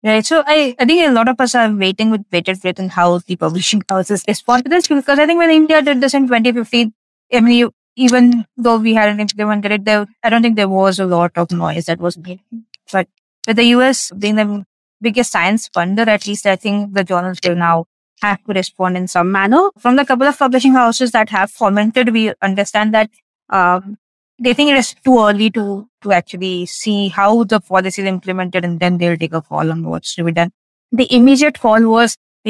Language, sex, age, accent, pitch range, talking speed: English, female, 20-39, Indian, 190-235 Hz, 220 wpm